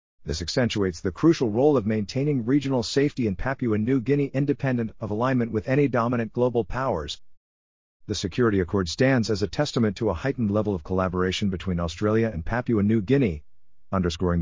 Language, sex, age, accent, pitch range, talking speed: English, male, 50-69, American, 90-120 Hz, 170 wpm